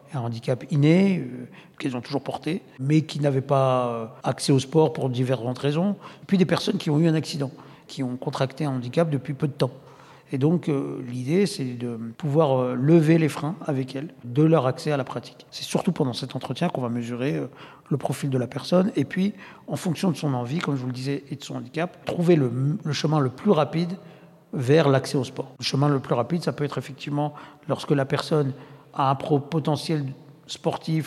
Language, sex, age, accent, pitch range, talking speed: French, male, 50-69, French, 130-160 Hz, 205 wpm